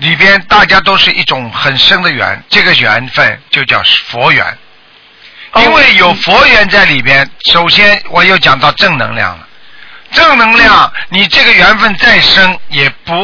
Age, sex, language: 50-69, male, Chinese